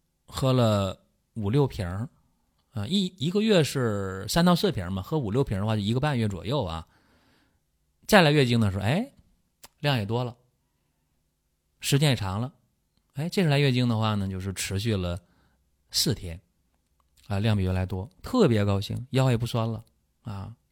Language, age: Chinese, 30-49